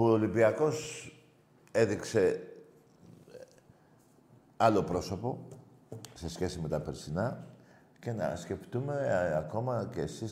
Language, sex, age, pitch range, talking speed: Greek, male, 60-79, 95-135 Hz, 95 wpm